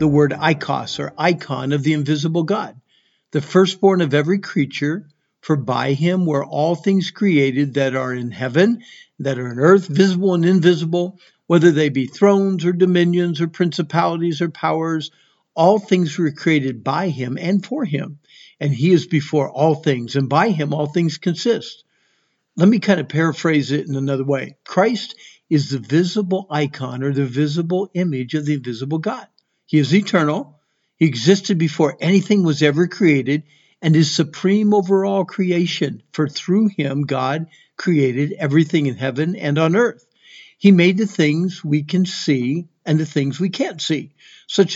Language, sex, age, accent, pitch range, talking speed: English, male, 60-79, American, 145-180 Hz, 170 wpm